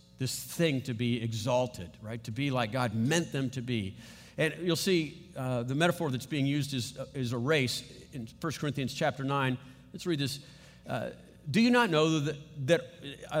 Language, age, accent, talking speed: English, 50-69, American, 195 wpm